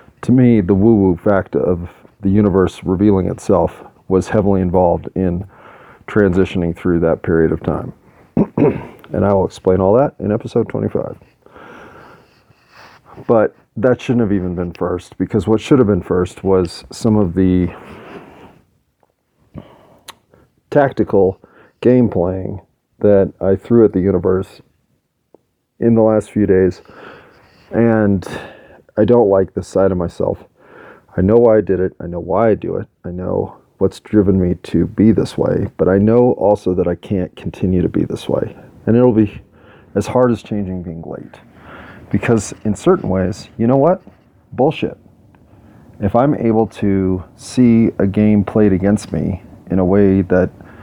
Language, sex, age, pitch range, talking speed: English, male, 40-59, 95-110 Hz, 155 wpm